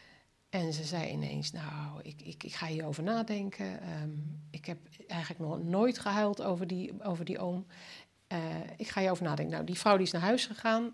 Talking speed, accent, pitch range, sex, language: 195 wpm, Dutch, 175-225 Hz, female, Dutch